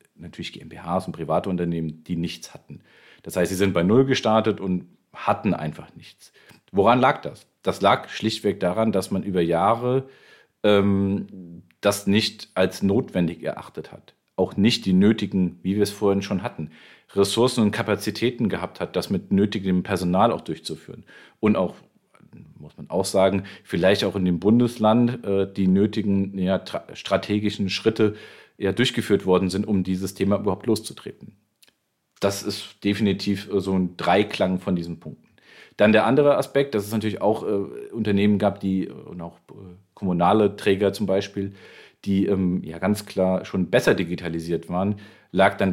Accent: German